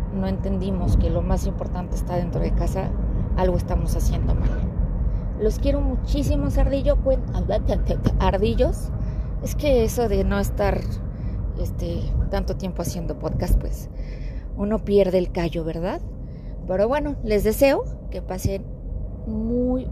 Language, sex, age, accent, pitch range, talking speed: Spanish, female, 30-49, Mexican, 170-220 Hz, 135 wpm